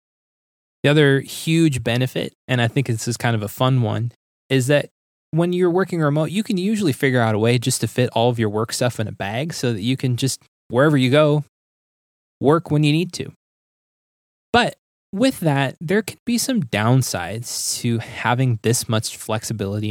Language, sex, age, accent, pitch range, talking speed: English, male, 20-39, American, 115-145 Hz, 195 wpm